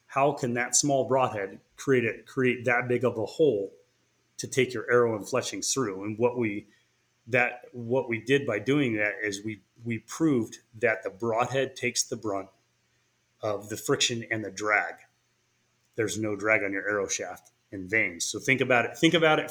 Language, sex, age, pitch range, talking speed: English, male, 30-49, 105-125 Hz, 190 wpm